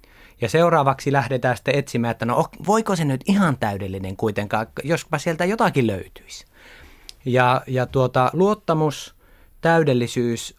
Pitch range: 105-140 Hz